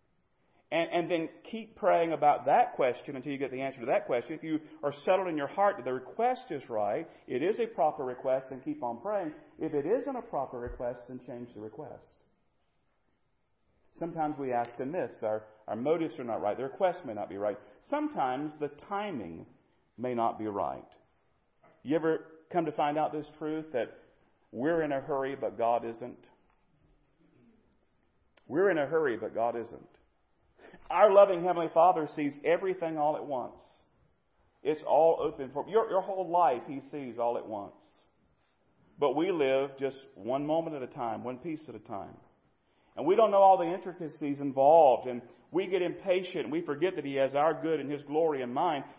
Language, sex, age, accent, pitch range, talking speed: English, male, 40-59, American, 135-195 Hz, 190 wpm